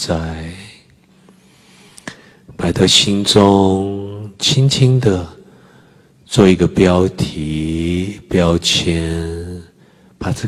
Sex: male